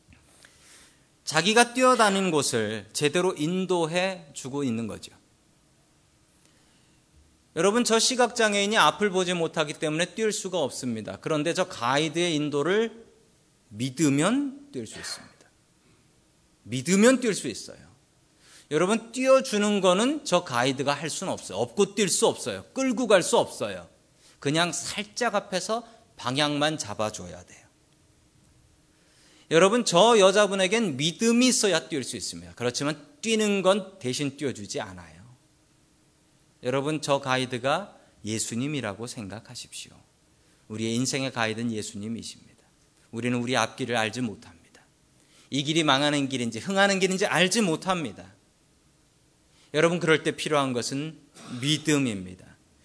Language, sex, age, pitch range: Korean, male, 40-59, 130-190 Hz